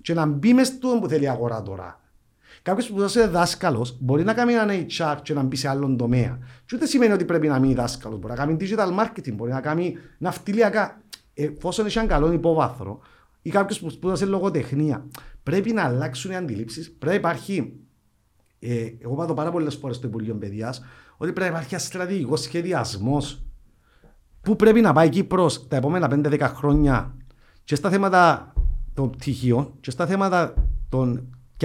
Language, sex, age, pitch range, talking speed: Greek, male, 50-69, 130-185 Hz, 170 wpm